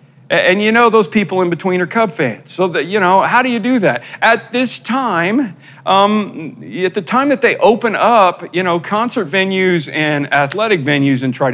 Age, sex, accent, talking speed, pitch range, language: 40-59, male, American, 205 wpm, 135-185 Hz, English